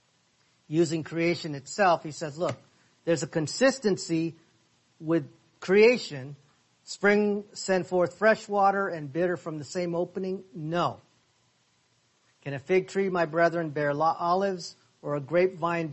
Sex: male